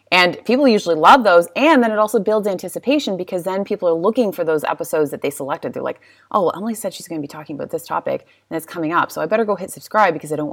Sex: female